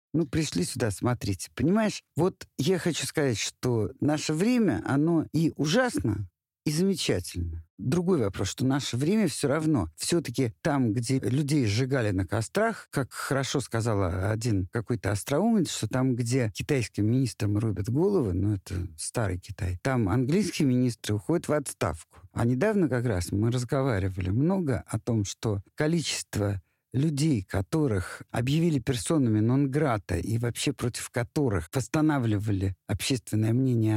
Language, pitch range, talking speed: Russian, 105-150 Hz, 135 wpm